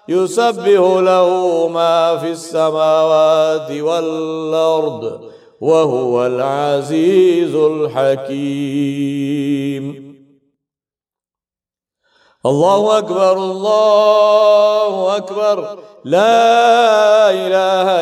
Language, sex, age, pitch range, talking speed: English, male, 40-59, 140-205 Hz, 50 wpm